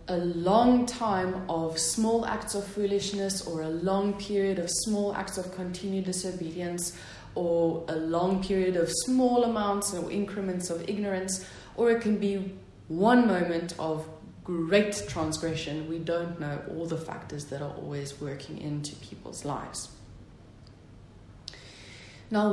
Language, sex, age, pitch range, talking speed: English, female, 20-39, 160-195 Hz, 140 wpm